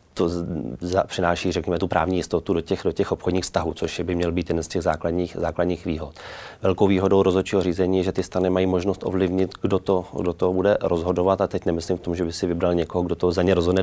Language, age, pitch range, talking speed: Czech, 30-49, 85-95 Hz, 240 wpm